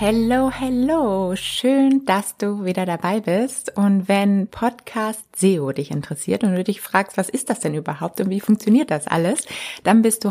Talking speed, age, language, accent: 180 wpm, 20-39, German, German